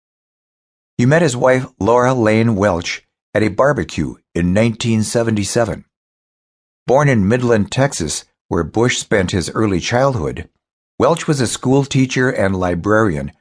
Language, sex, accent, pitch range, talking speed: English, male, American, 90-125 Hz, 125 wpm